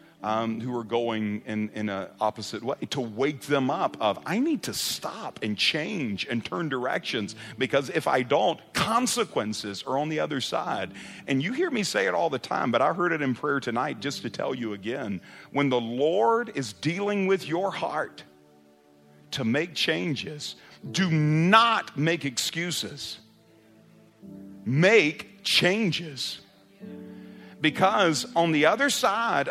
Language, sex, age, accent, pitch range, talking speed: English, male, 50-69, American, 125-195 Hz, 155 wpm